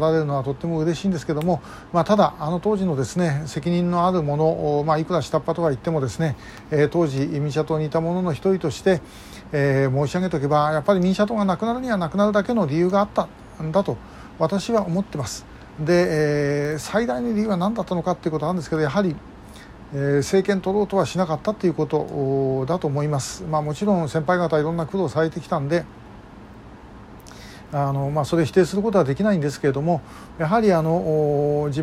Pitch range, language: 145-185 Hz, Japanese